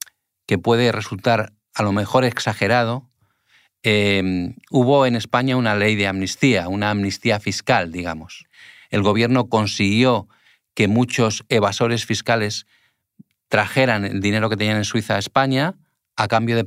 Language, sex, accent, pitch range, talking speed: Spanish, male, Spanish, 100-120 Hz, 135 wpm